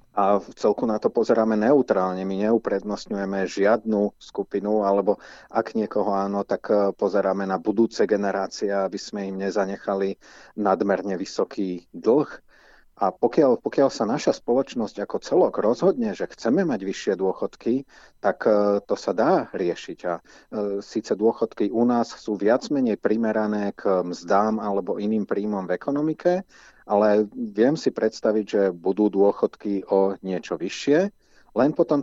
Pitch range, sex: 100-110 Hz, male